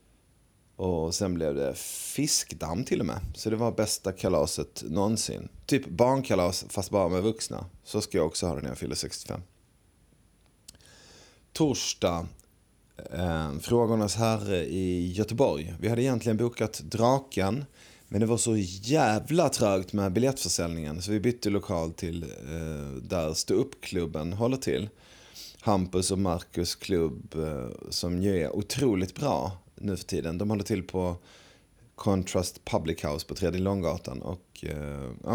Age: 30-49